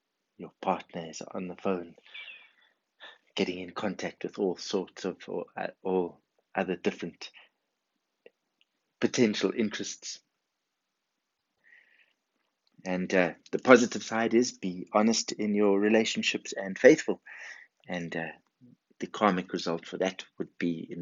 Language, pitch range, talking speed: English, 85-105 Hz, 120 wpm